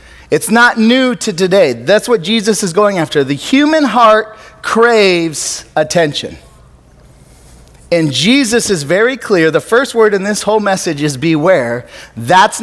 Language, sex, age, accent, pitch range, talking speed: English, male, 30-49, American, 155-235 Hz, 145 wpm